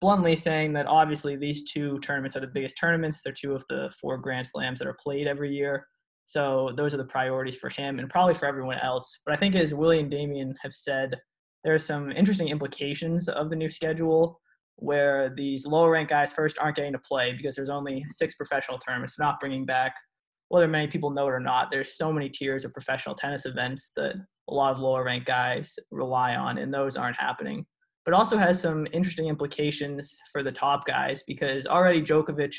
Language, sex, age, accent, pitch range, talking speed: English, male, 20-39, American, 135-160 Hz, 210 wpm